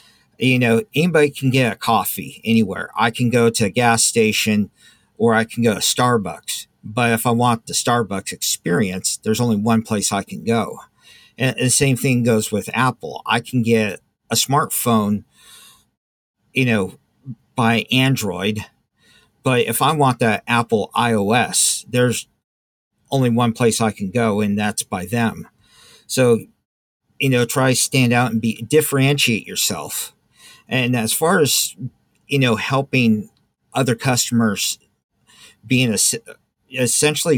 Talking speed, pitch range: 145 wpm, 110-125 Hz